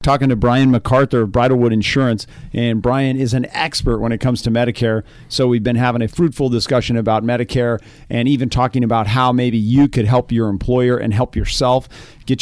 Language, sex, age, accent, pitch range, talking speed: English, male, 40-59, American, 110-125 Hz, 200 wpm